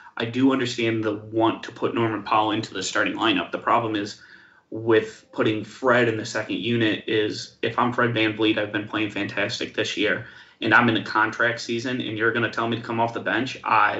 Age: 30-49